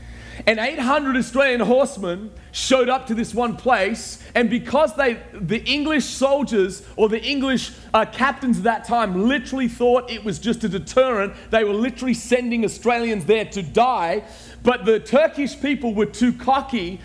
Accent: Australian